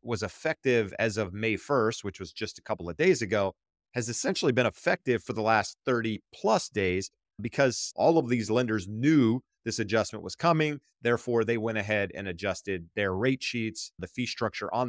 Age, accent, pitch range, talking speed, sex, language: 30-49, American, 110-160 Hz, 190 wpm, male, English